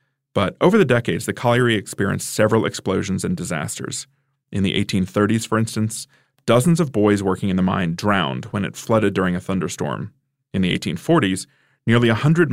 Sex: male